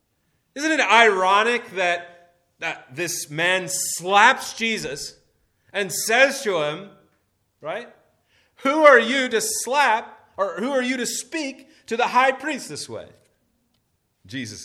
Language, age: English, 30-49